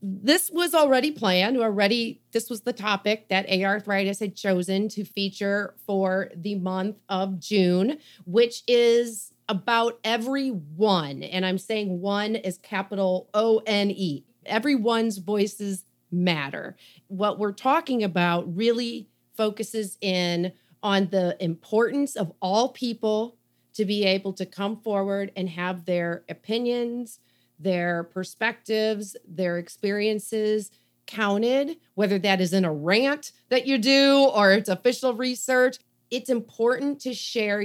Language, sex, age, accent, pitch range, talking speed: English, female, 40-59, American, 190-235 Hz, 125 wpm